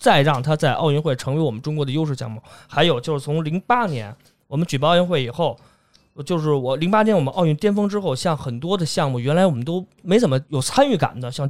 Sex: male